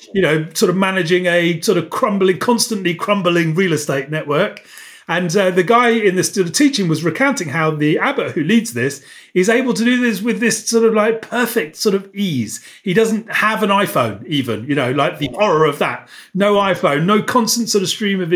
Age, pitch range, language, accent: 40-59, 165-215 Hz, English, British